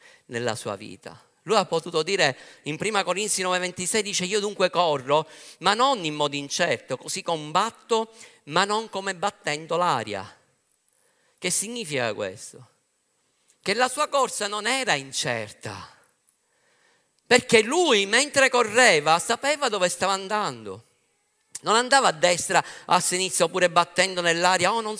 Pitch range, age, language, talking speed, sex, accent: 180-255 Hz, 50-69, Italian, 135 wpm, male, native